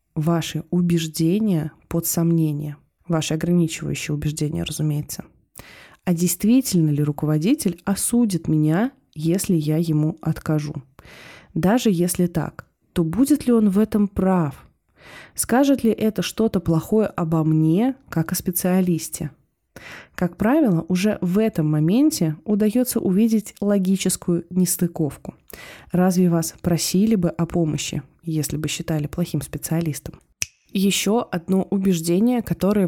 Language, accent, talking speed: Russian, native, 115 wpm